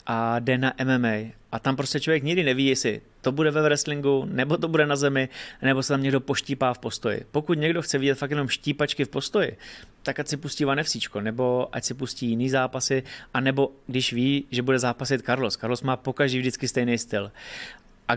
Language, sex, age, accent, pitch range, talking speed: Czech, male, 30-49, native, 125-135 Hz, 200 wpm